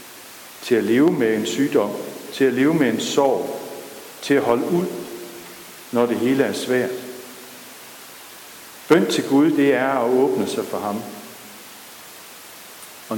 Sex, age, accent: male, 60-79, native